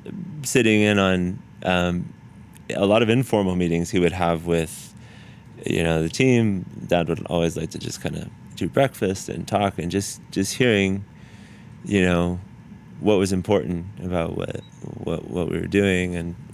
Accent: American